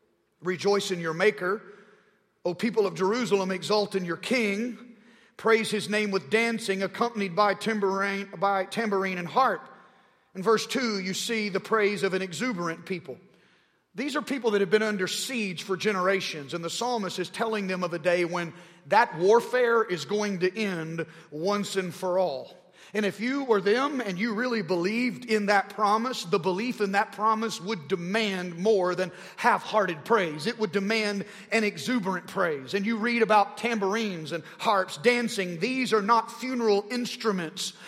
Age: 40-59